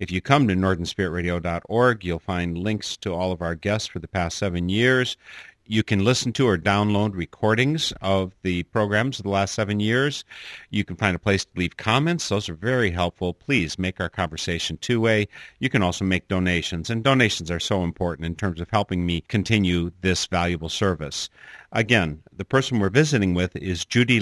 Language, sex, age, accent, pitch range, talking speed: English, male, 50-69, American, 90-110 Hz, 190 wpm